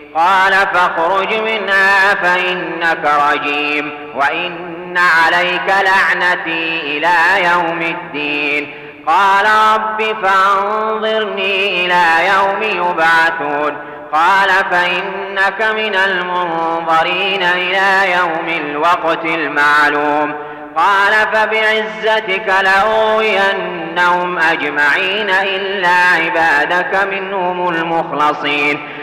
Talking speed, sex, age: 70 wpm, male, 30-49